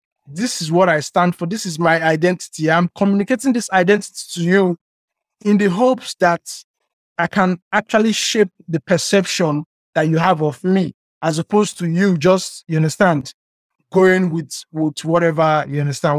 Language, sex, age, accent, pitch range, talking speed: English, male, 20-39, Nigerian, 155-195 Hz, 165 wpm